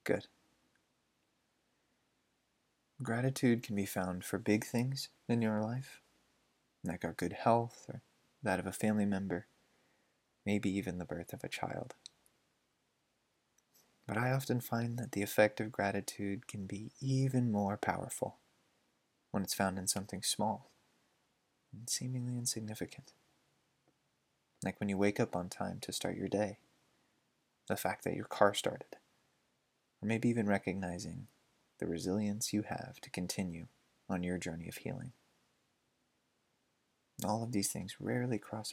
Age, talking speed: 20-39, 140 wpm